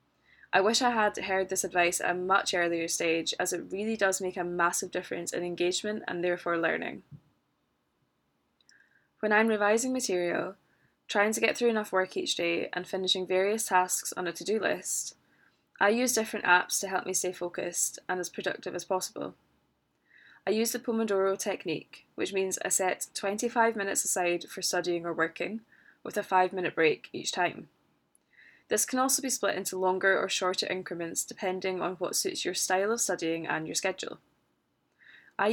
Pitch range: 175-205 Hz